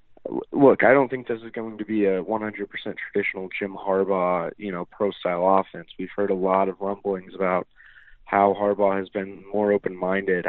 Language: English